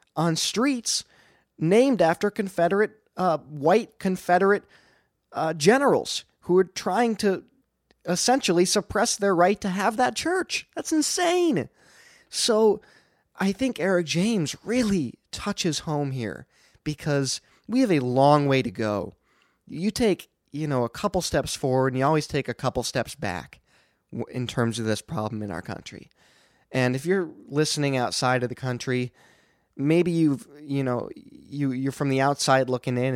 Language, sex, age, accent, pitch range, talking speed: English, male, 30-49, American, 130-185 Hz, 155 wpm